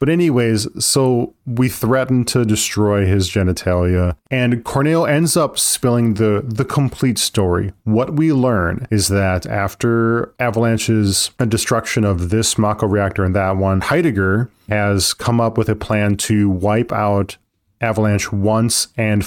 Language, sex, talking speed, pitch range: English, male, 145 wpm, 100-120 Hz